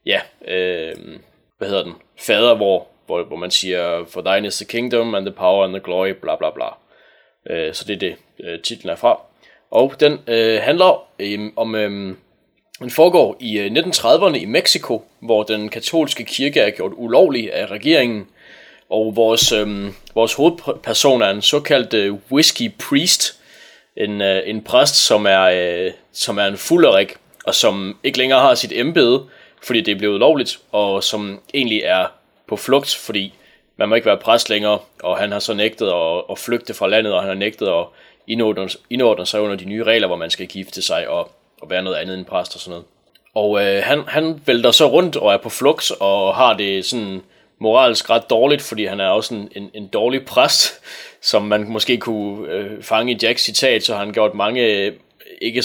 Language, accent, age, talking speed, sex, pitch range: Danish, native, 20-39, 185 wpm, male, 100-120 Hz